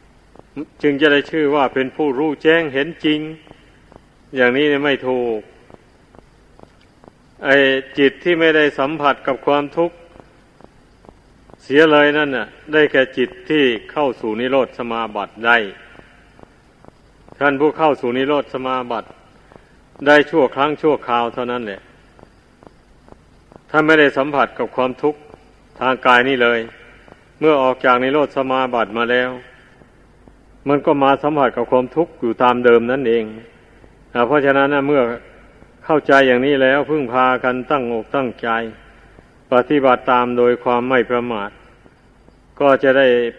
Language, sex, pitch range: Thai, male, 120-145 Hz